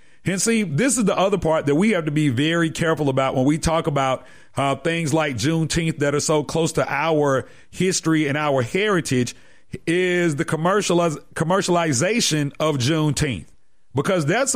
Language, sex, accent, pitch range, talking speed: English, male, American, 150-200 Hz, 170 wpm